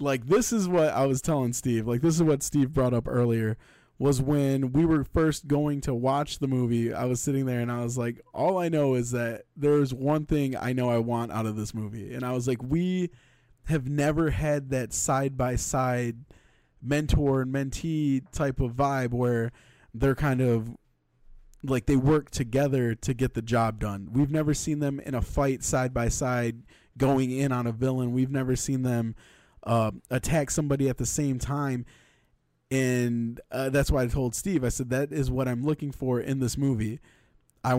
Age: 20-39